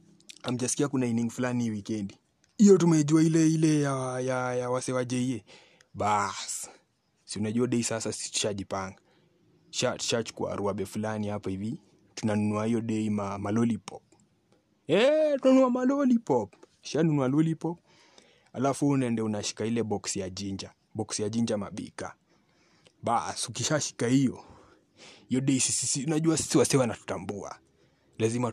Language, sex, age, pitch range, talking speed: Swahili, male, 30-49, 110-140 Hz, 95 wpm